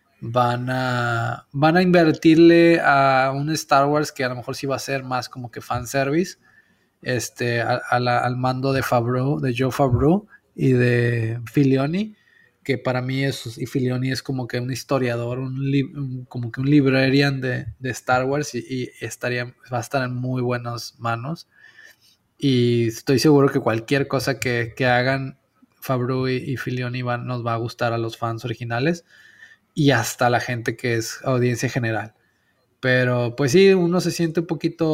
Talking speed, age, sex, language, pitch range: 180 wpm, 20-39, male, Spanish, 125-145 Hz